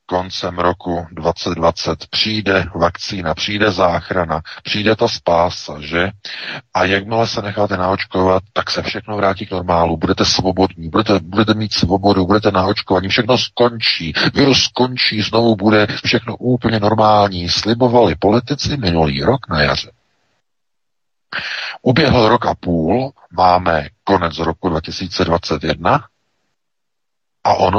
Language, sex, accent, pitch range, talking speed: Czech, male, native, 85-110 Hz, 115 wpm